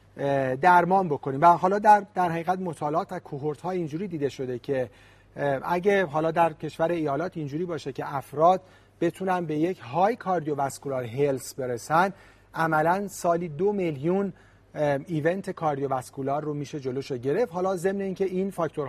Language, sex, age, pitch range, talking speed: Persian, male, 40-59, 135-180 Hz, 155 wpm